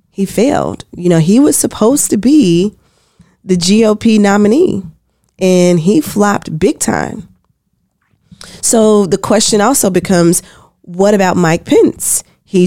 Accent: American